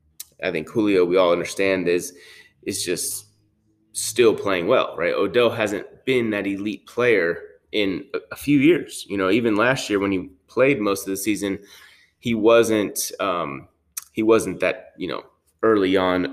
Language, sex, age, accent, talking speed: English, male, 20-39, American, 165 wpm